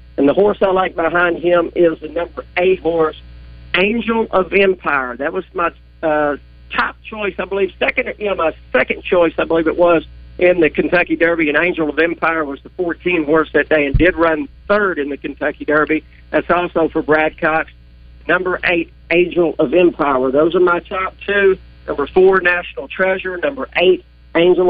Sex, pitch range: male, 150-185 Hz